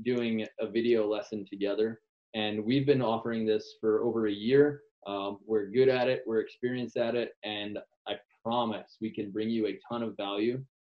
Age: 20-39